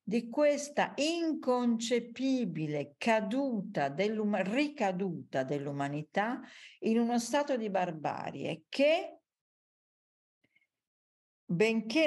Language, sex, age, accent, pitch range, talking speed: Italian, female, 50-69, native, 180-245 Hz, 70 wpm